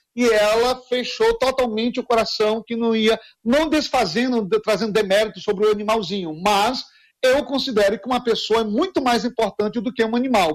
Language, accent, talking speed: Portuguese, Brazilian, 170 wpm